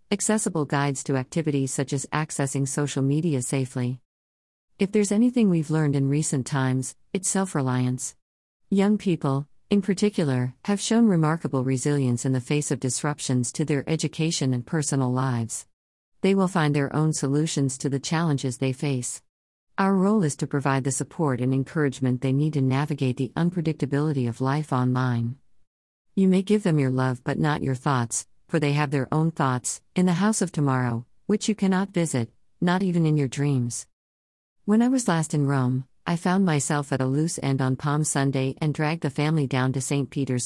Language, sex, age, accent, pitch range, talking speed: English, female, 50-69, American, 130-160 Hz, 180 wpm